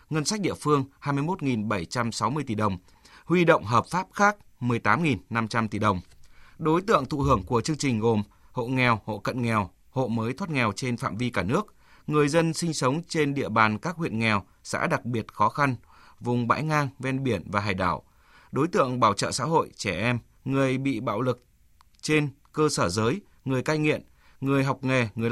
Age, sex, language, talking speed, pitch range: 20-39, male, Vietnamese, 195 wpm, 110-140 Hz